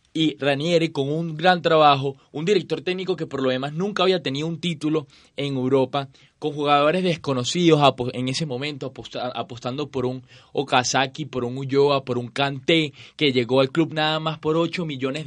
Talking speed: 175 wpm